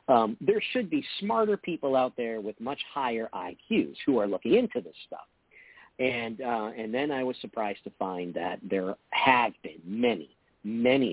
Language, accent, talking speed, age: English, American, 180 wpm, 50-69